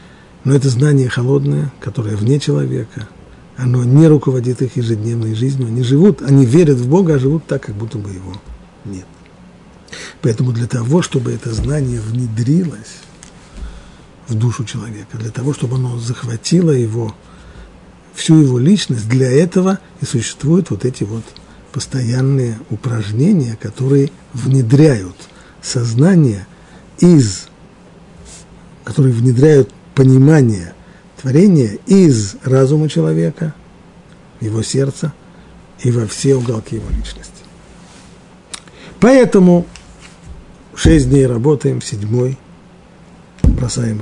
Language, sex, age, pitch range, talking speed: Russian, male, 50-69, 115-155 Hz, 110 wpm